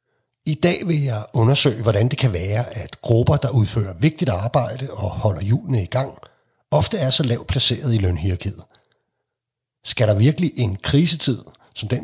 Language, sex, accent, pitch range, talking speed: Danish, male, native, 110-135 Hz, 170 wpm